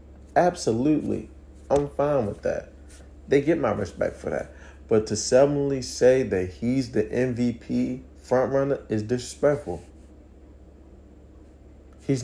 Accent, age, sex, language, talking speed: American, 40-59, male, English, 120 wpm